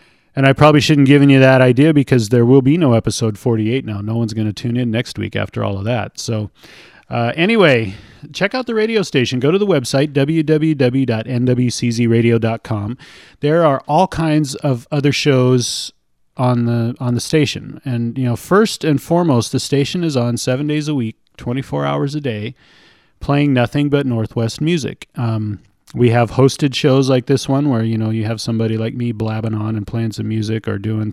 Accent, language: American, English